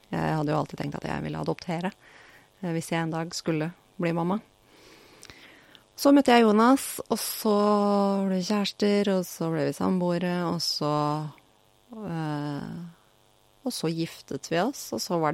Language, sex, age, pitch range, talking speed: English, female, 30-49, 135-195 Hz, 155 wpm